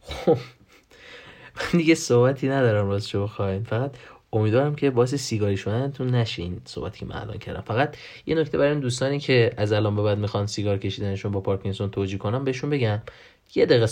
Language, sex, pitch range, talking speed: Persian, male, 100-125 Hz, 175 wpm